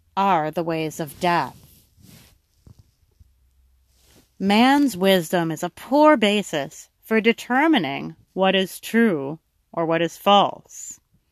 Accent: American